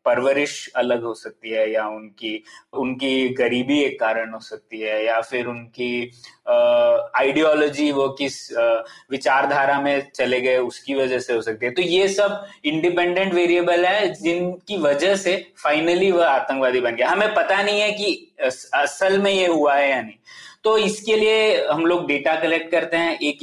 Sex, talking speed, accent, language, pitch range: male, 170 wpm, native, Hindi, 135-185 Hz